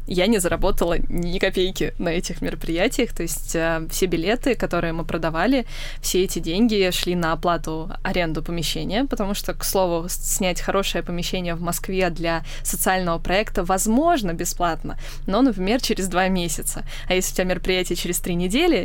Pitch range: 170-205 Hz